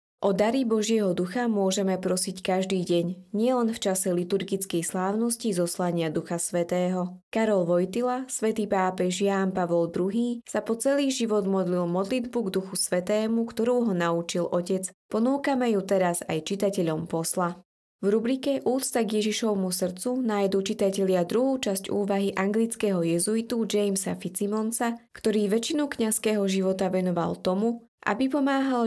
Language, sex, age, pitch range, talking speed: Slovak, female, 20-39, 180-225 Hz, 135 wpm